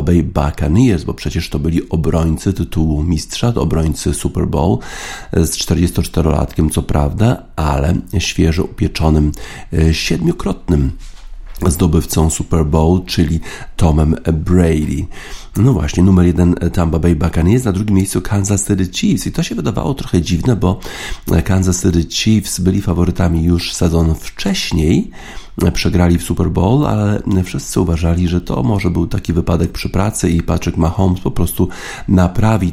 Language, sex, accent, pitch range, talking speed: Polish, male, native, 80-95 Hz, 140 wpm